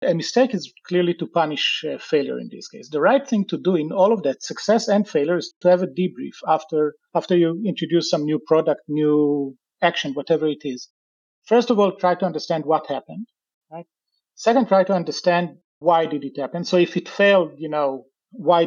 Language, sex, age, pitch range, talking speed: English, male, 40-59, 155-195 Hz, 205 wpm